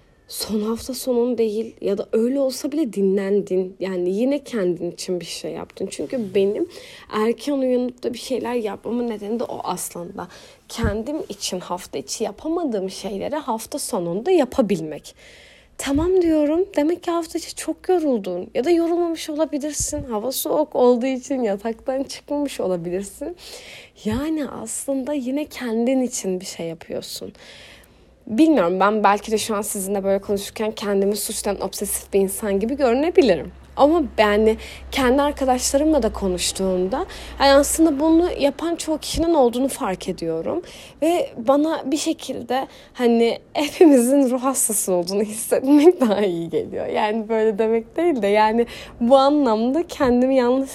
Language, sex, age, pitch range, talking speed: Turkish, female, 30-49, 205-290 Hz, 140 wpm